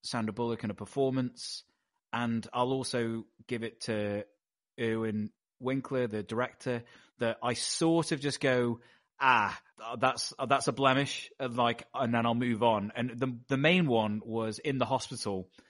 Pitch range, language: 110-135 Hz, English